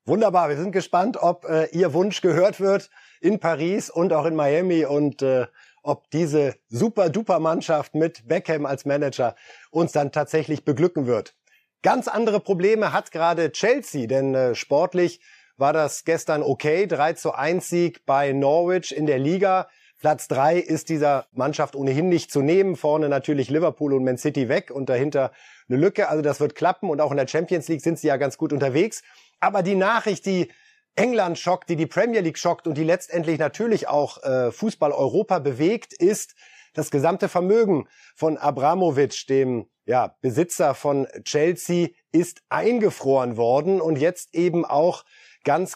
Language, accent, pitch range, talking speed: German, German, 145-185 Hz, 160 wpm